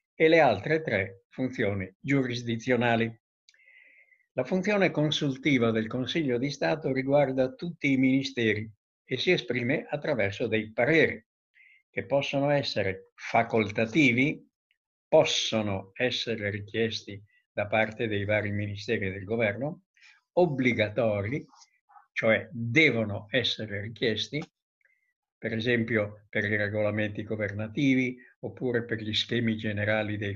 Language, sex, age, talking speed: Italian, male, 60-79, 105 wpm